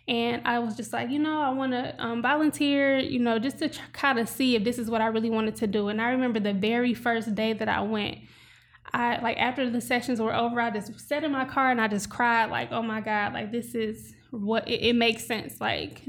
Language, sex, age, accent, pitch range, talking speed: English, female, 20-39, American, 220-245 Hz, 255 wpm